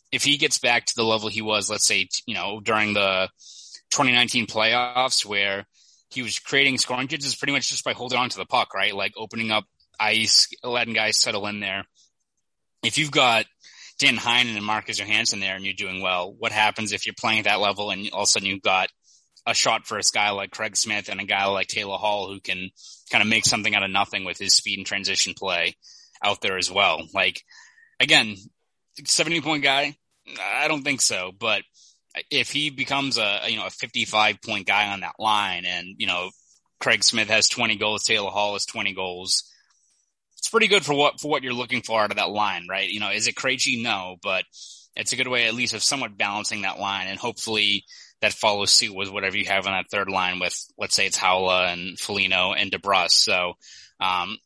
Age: 20-39